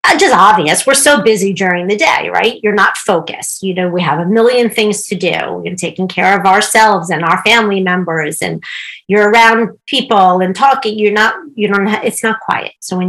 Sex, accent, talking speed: female, American, 210 wpm